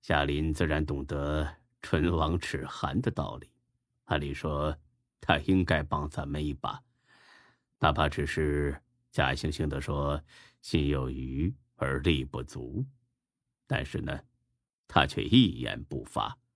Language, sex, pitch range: Chinese, male, 70-115 Hz